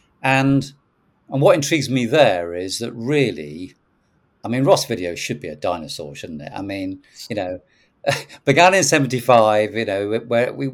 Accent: British